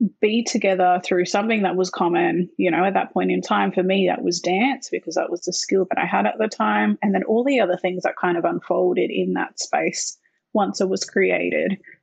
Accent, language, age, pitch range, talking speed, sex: Australian, English, 20-39, 180-220 Hz, 235 wpm, female